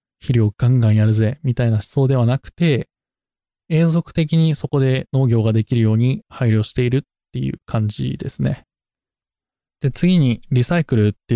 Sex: male